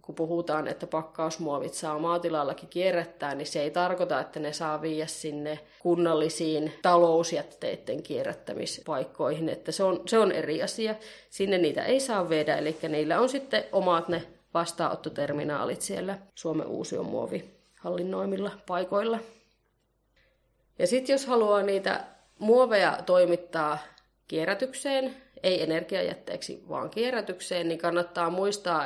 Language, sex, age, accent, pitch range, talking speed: Finnish, female, 30-49, native, 165-195 Hz, 120 wpm